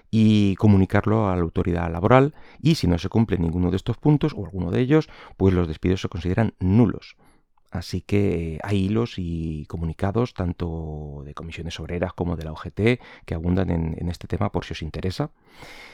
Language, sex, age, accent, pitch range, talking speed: Spanish, male, 30-49, Spanish, 85-110 Hz, 185 wpm